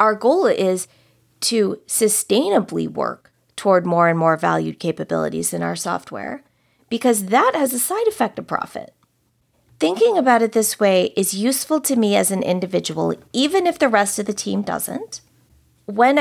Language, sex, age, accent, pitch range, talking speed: English, female, 30-49, American, 170-255 Hz, 165 wpm